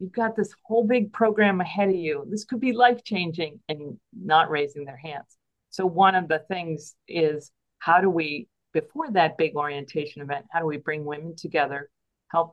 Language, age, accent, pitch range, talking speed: English, 50-69, American, 155-185 Hz, 190 wpm